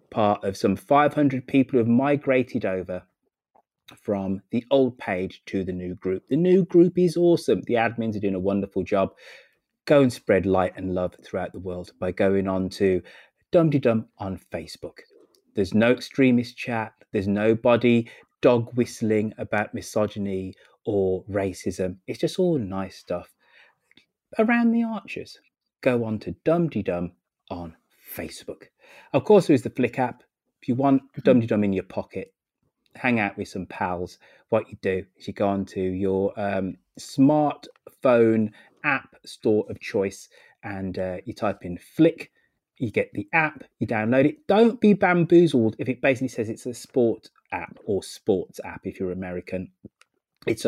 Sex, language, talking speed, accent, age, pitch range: male, English, 165 wpm, British, 30-49, 95-130 Hz